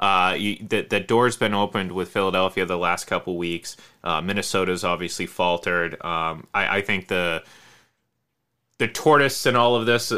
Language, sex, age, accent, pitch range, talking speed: English, male, 30-49, American, 90-115 Hz, 165 wpm